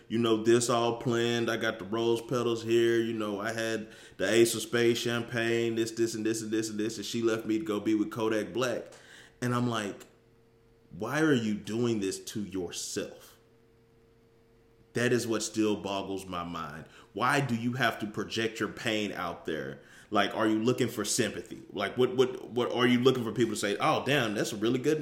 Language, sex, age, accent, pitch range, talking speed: English, male, 20-39, American, 110-125 Hz, 215 wpm